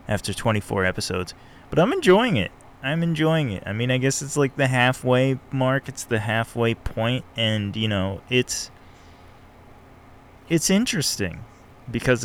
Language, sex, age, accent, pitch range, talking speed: English, male, 20-39, American, 95-125 Hz, 145 wpm